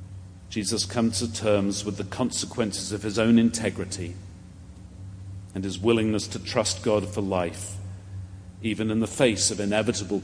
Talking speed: 145 wpm